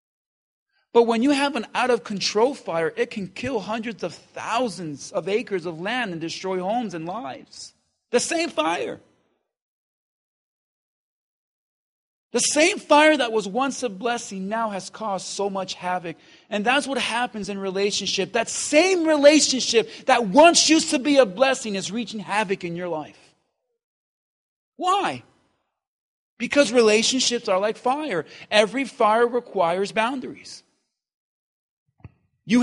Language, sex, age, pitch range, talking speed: English, male, 40-59, 215-285 Hz, 130 wpm